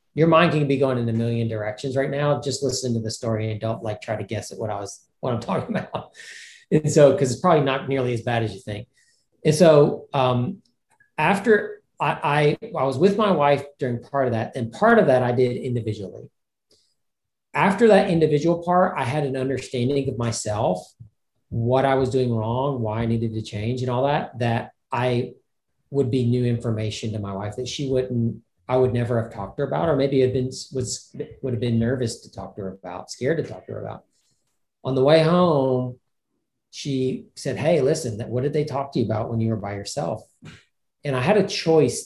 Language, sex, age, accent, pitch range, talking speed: English, male, 40-59, American, 115-140 Hz, 220 wpm